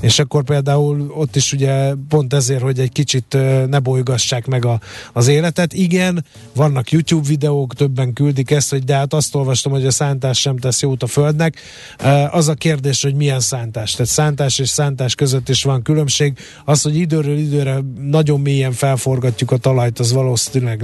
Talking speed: 180 wpm